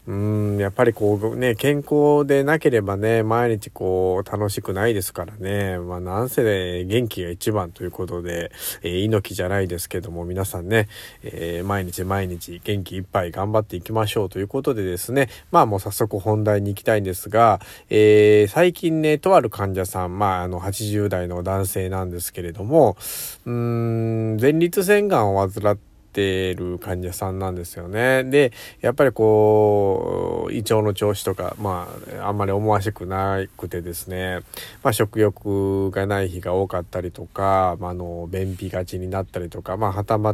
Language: Japanese